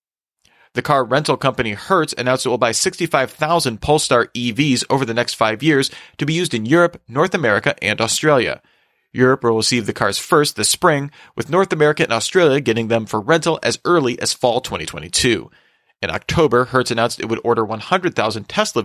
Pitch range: 115-140 Hz